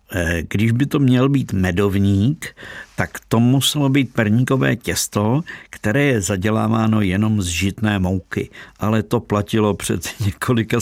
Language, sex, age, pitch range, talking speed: Czech, male, 50-69, 95-110 Hz, 135 wpm